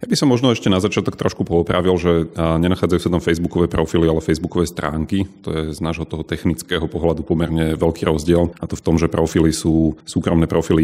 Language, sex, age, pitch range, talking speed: Slovak, male, 30-49, 75-90 Hz, 205 wpm